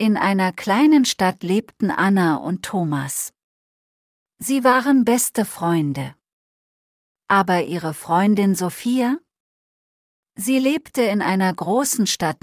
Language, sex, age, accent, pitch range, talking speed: English, female, 40-59, German, 165-230 Hz, 105 wpm